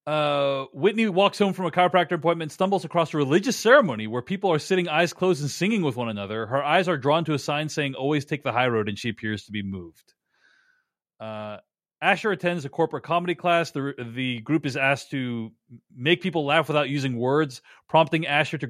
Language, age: English, 30-49